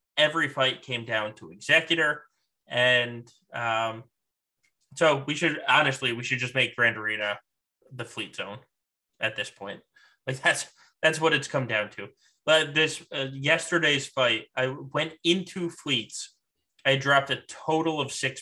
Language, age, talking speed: English, 20-39, 155 wpm